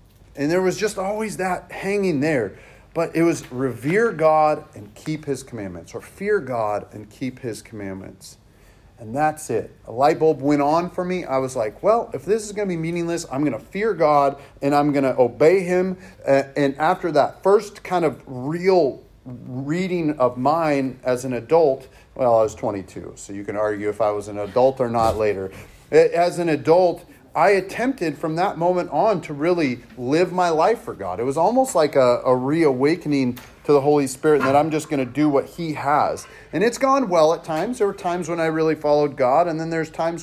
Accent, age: American, 40-59